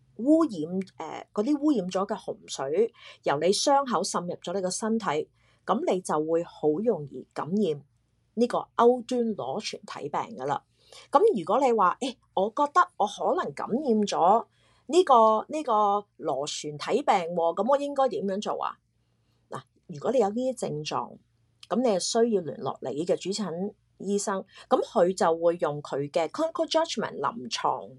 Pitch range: 165-240 Hz